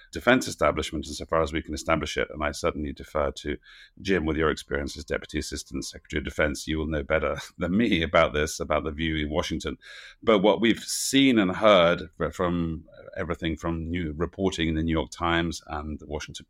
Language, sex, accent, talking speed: English, male, British, 200 wpm